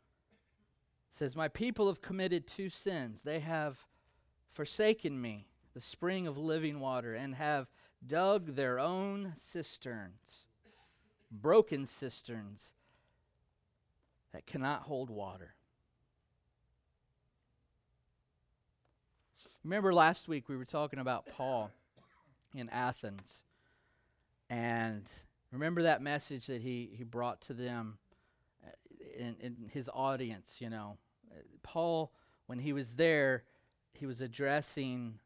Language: English